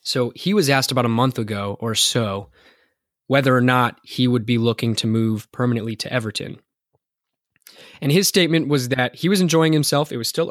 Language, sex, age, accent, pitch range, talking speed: English, male, 20-39, American, 115-135 Hz, 195 wpm